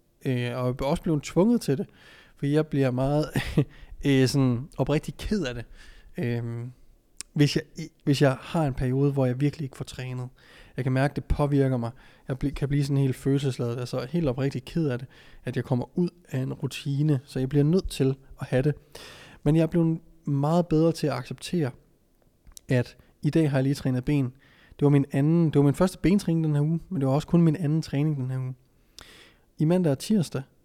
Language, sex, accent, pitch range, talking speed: Danish, male, native, 130-155 Hz, 215 wpm